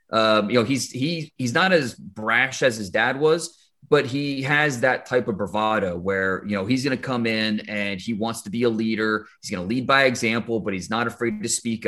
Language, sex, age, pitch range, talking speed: English, male, 30-49, 110-135 Hz, 240 wpm